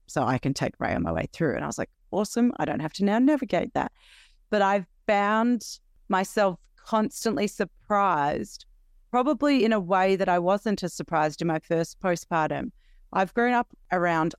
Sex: female